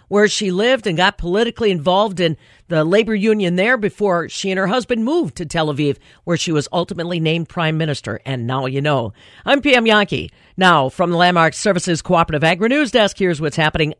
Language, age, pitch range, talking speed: English, 50-69, 170-245 Hz, 195 wpm